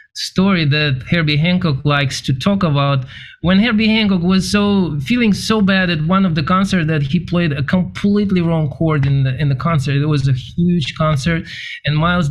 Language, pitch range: English, 135-175 Hz